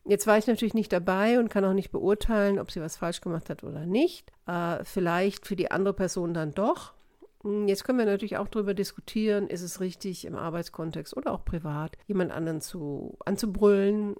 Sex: female